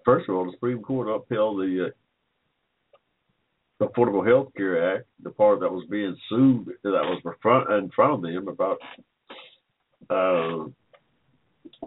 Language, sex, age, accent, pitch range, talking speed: English, male, 60-79, American, 90-125 Hz, 135 wpm